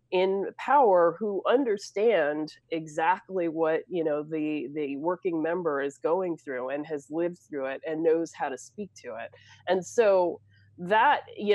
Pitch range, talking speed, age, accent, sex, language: 150-190 Hz, 160 wpm, 30-49, American, female, English